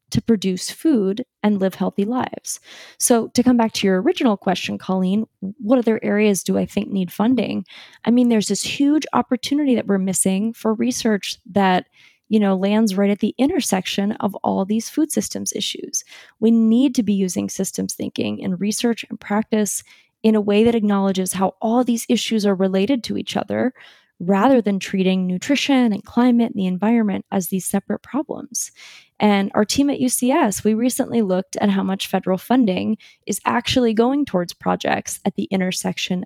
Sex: female